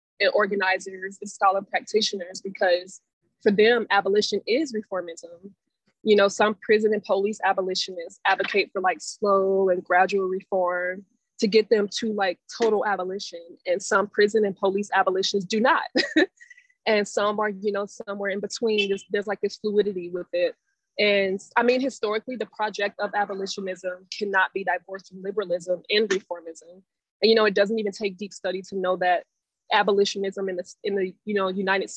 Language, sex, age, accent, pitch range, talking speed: English, female, 20-39, American, 190-210 Hz, 170 wpm